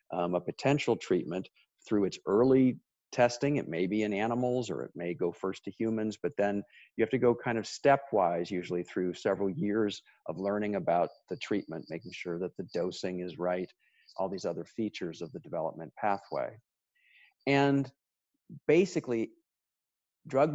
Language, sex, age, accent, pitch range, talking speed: English, male, 50-69, American, 100-135 Hz, 165 wpm